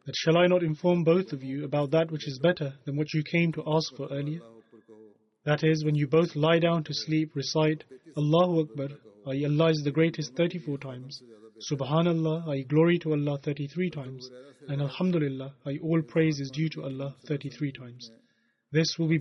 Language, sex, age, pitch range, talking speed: English, male, 30-49, 135-165 Hz, 190 wpm